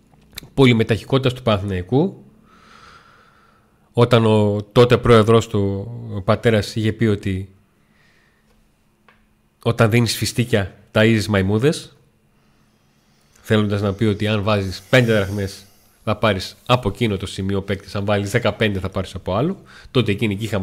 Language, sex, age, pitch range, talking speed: Greek, male, 30-49, 100-135 Hz, 125 wpm